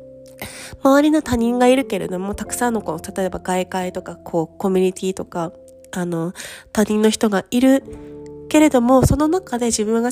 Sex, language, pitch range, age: female, Japanese, 195-260 Hz, 20-39